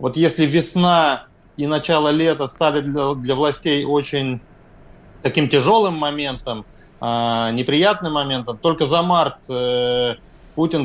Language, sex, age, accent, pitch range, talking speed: Russian, male, 30-49, native, 135-160 Hz, 110 wpm